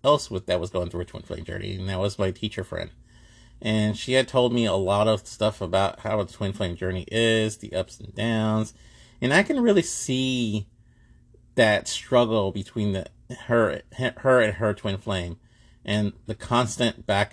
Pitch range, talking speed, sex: 95-115 Hz, 190 wpm, male